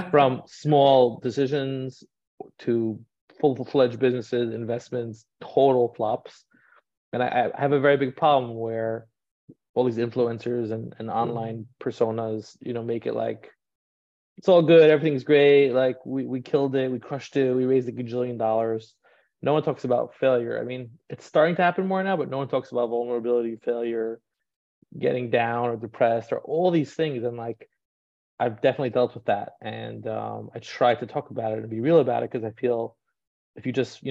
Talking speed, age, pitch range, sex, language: 180 wpm, 30-49, 115-130 Hz, male, English